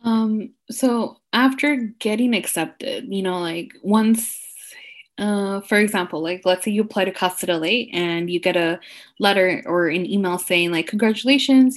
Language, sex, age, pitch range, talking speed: English, female, 10-29, 180-240 Hz, 160 wpm